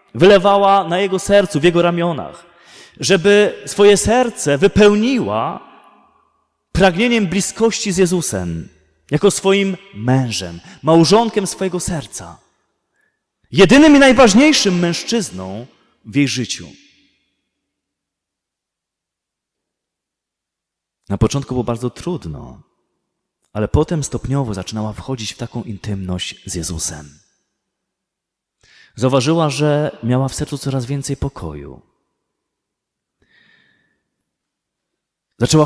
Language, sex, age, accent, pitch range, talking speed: Polish, male, 30-49, native, 115-185 Hz, 90 wpm